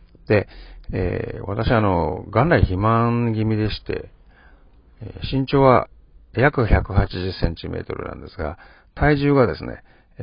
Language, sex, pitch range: Japanese, male, 90-130 Hz